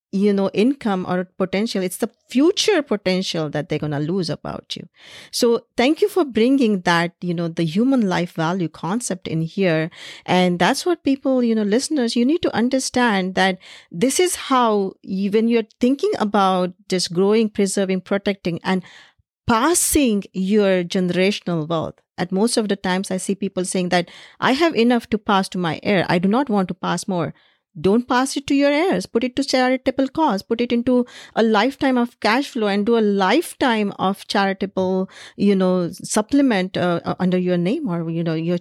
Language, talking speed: English, 185 wpm